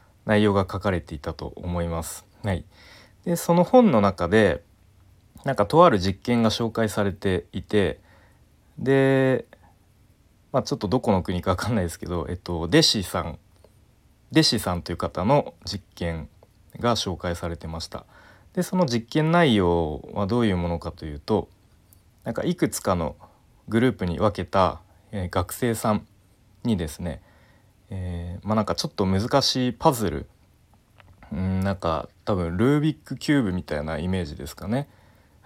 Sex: male